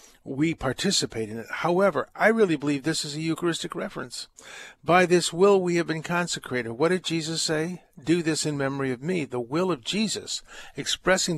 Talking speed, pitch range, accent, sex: 185 wpm, 130-170 Hz, American, male